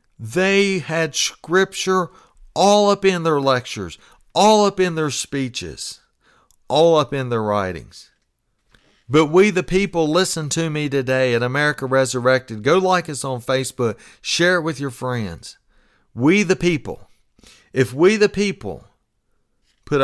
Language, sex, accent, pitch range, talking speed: English, male, American, 125-175 Hz, 140 wpm